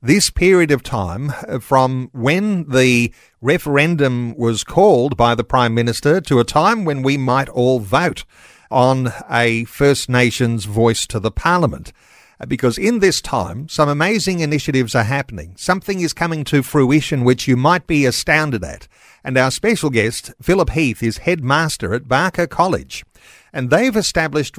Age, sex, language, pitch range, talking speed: 50-69, male, English, 125-170 Hz, 155 wpm